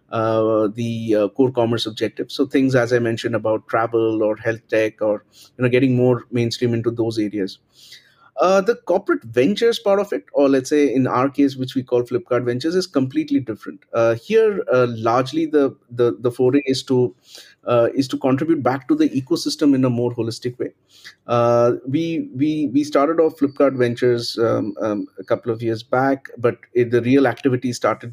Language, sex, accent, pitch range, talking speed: English, male, Indian, 115-135 Hz, 190 wpm